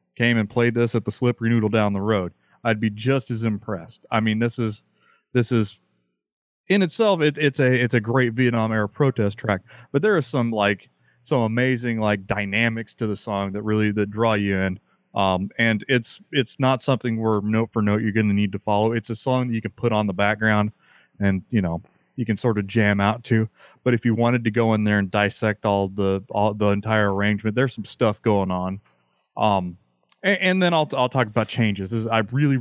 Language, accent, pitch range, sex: English, American, 100-120 Hz, male